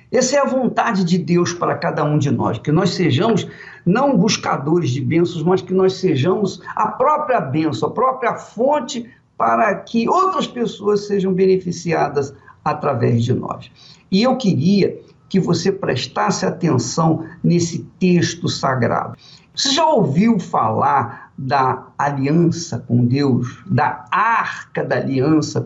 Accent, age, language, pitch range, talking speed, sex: Brazilian, 50-69, Portuguese, 155-220 Hz, 140 wpm, male